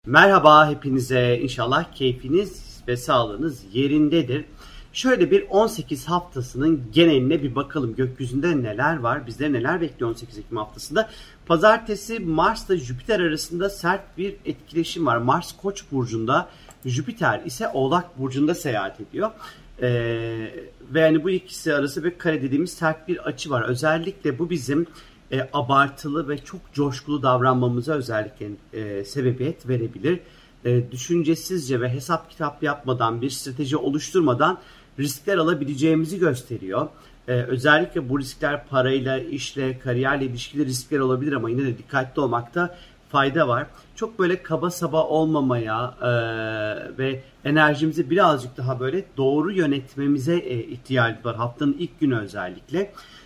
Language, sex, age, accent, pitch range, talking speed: Turkish, male, 40-59, native, 125-165 Hz, 130 wpm